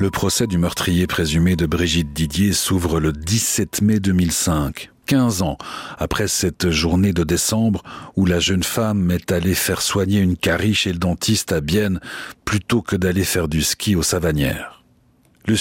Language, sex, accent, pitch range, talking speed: French, male, French, 85-120 Hz, 170 wpm